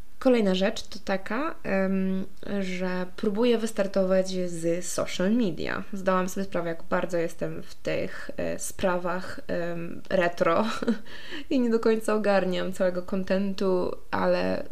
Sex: female